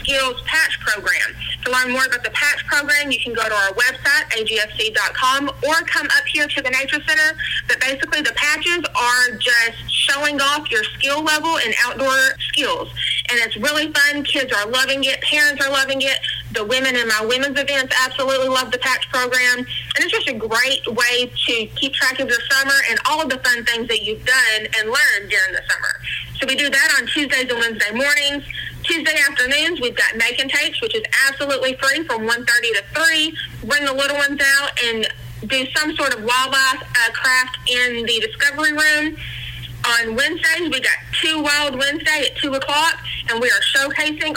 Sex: female